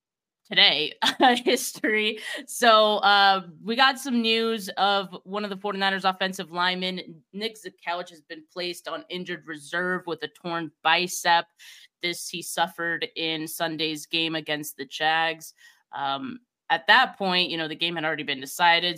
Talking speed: 150 wpm